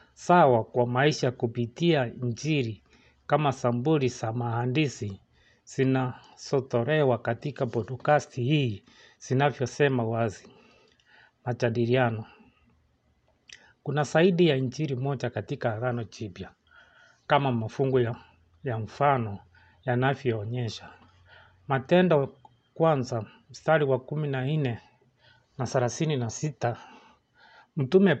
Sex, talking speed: male, 90 wpm